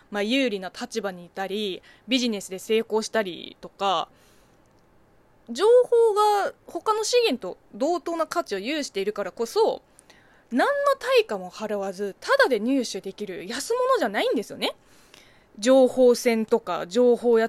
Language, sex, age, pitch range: Japanese, female, 20-39, 205-335 Hz